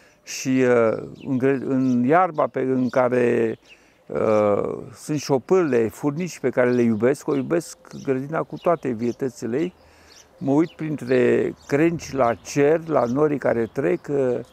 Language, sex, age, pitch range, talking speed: Romanian, male, 50-69, 130-165 Hz, 135 wpm